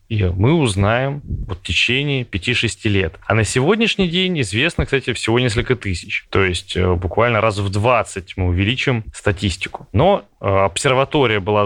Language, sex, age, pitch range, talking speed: Russian, male, 20-39, 105-135 Hz, 155 wpm